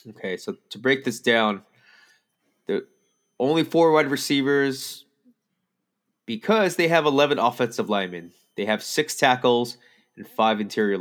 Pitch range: 105-130 Hz